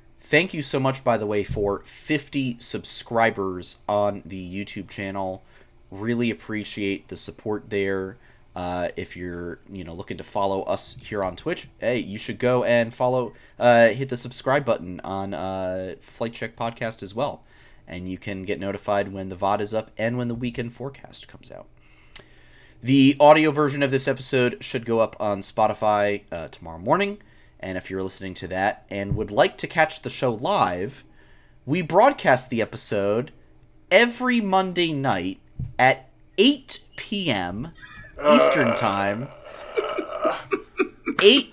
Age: 30-49